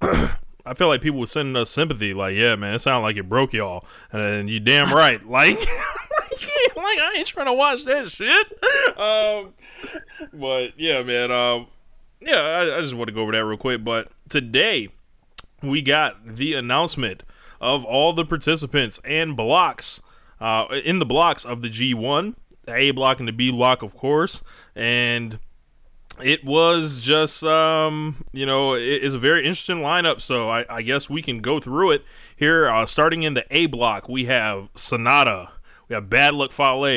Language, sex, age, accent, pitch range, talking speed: English, male, 20-39, American, 115-160 Hz, 180 wpm